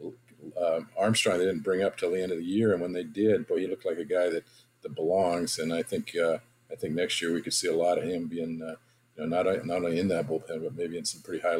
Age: 50-69